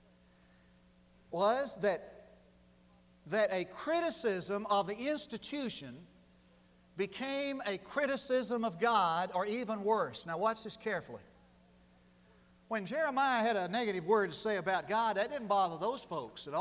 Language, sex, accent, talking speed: English, male, American, 130 wpm